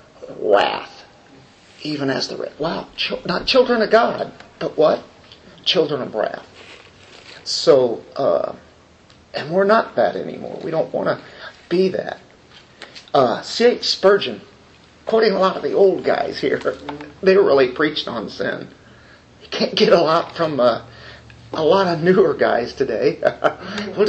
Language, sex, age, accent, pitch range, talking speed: English, male, 50-69, American, 170-240 Hz, 145 wpm